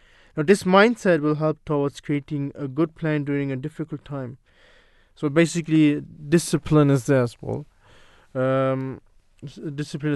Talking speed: 135 wpm